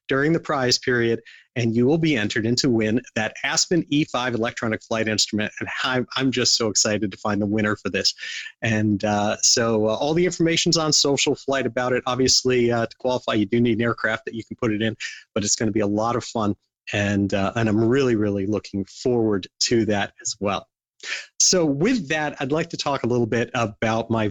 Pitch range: 115-155 Hz